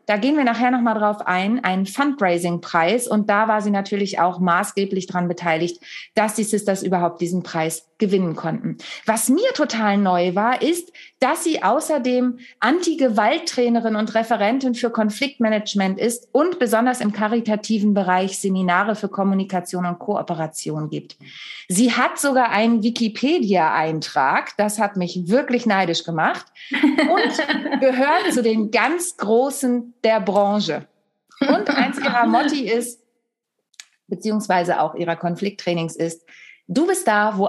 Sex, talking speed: female, 140 wpm